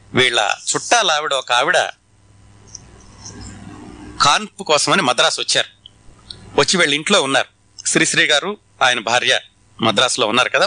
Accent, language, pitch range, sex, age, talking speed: native, Telugu, 100-160 Hz, male, 30-49, 110 wpm